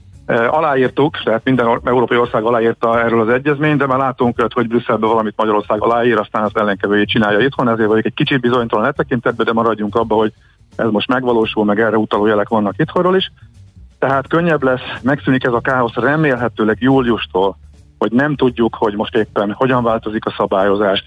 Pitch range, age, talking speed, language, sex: 110-130 Hz, 50-69, 170 wpm, Hungarian, male